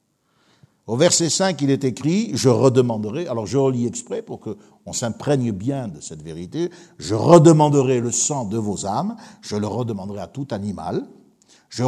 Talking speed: 170 wpm